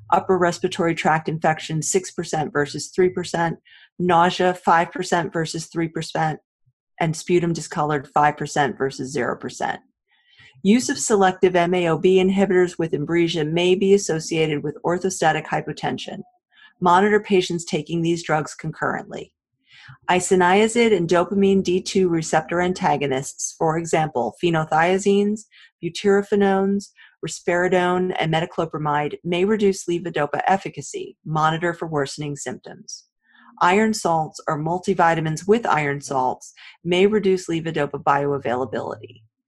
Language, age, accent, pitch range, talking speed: English, 40-59, American, 150-190 Hz, 105 wpm